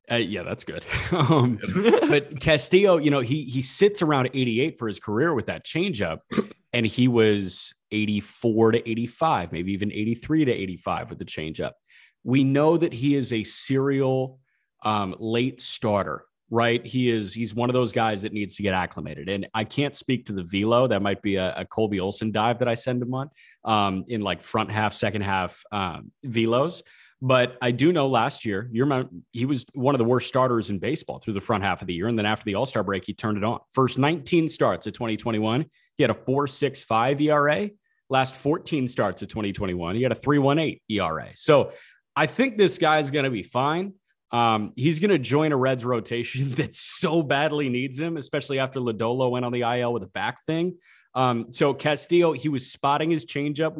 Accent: American